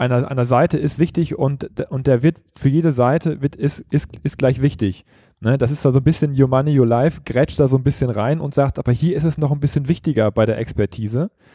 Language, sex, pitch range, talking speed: German, male, 120-155 Hz, 235 wpm